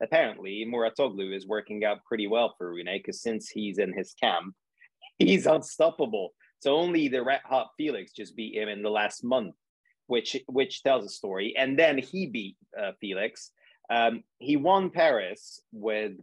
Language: English